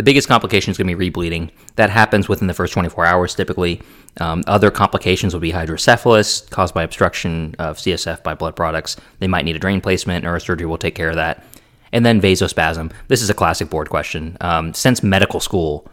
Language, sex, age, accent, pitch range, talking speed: English, male, 20-39, American, 85-105 Hz, 205 wpm